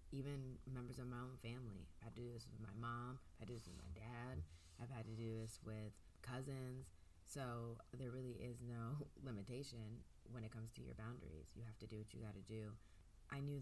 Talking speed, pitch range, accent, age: 205 wpm, 110-125 Hz, American, 20-39